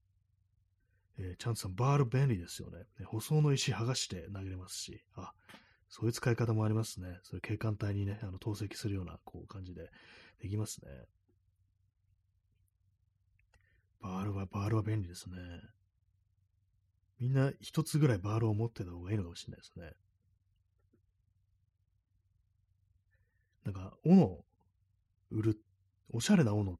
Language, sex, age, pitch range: Japanese, male, 30-49, 95-110 Hz